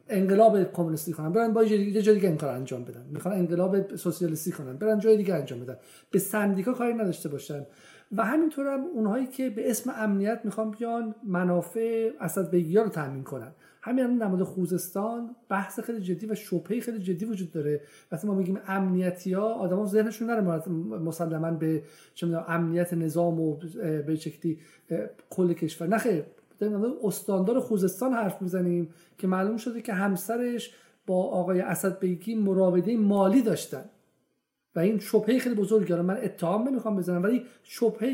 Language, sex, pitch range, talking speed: Persian, male, 175-220 Hz, 155 wpm